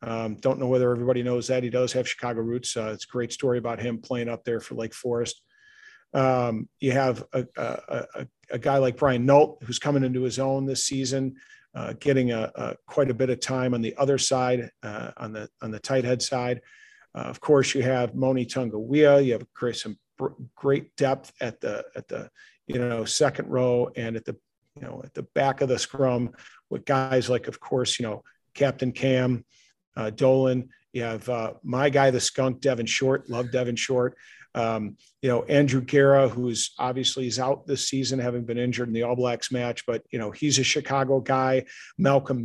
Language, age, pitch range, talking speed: English, 50-69, 120-135 Hz, 205 wpm